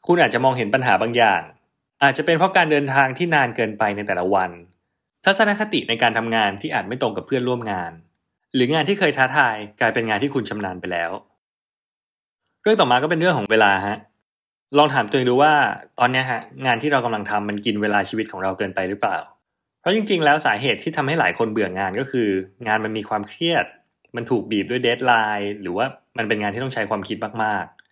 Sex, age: male, 20-39